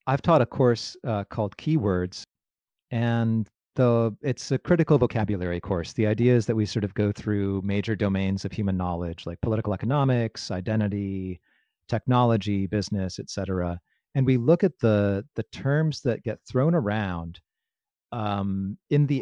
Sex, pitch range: male, 100-135 Hz